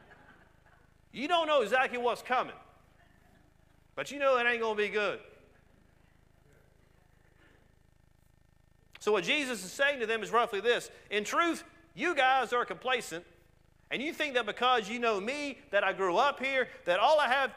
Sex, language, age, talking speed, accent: male, English, 40-59, 165 wpm, American